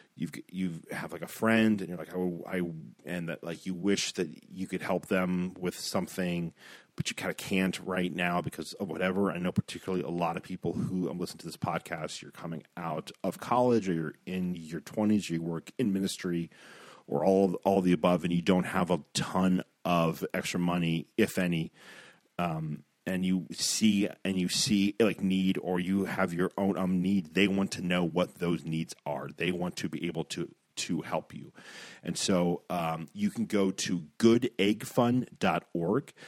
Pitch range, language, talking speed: 85-100 Hz, English, 190 wpm